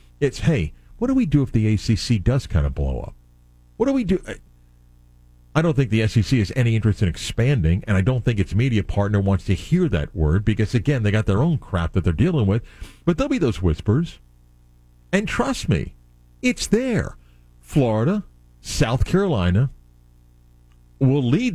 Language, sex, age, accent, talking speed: English, male, 50-69, American, 185 wpm